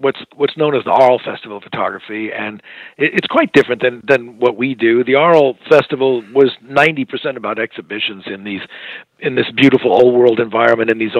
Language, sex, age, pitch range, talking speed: English, male, 50-69, 115-145 Hz, 195 wpm